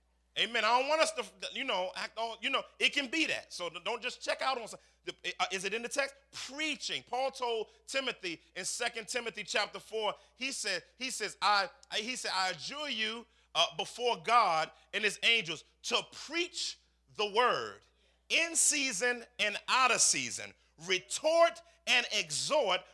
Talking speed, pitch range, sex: 175 wpm, 170-265 Hz, male